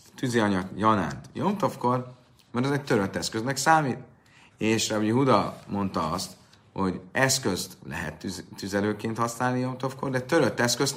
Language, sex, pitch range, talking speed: Hungarian, male, 95-125 Hz, 130 wpm